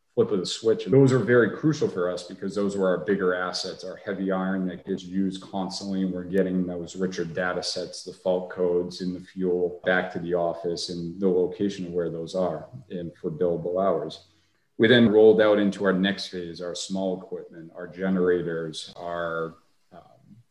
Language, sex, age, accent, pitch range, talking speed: English, male, 40-59, American, 90-100 Hz, 190 wpm